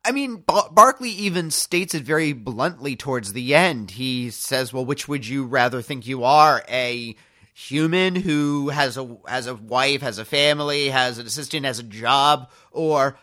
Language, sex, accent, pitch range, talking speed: English, male, American, 120-155 Hz, 170 wpm